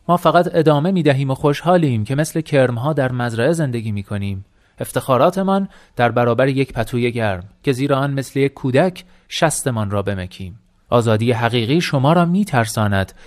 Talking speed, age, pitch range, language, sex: 150 wpm, 30-49, 110-165 Hz, Persian, male